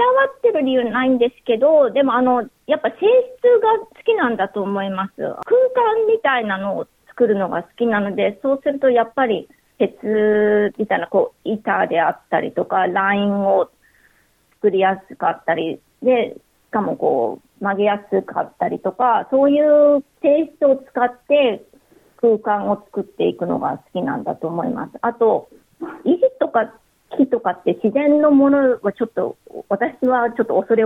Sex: female